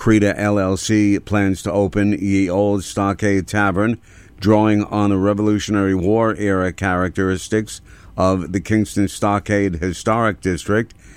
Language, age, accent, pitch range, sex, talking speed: English, 50-69, American, 95-105 Hz, male, 120 wpm